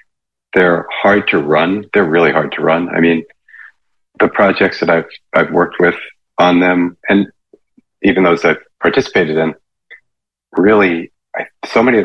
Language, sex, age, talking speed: English, male, 40-59, 155 wpm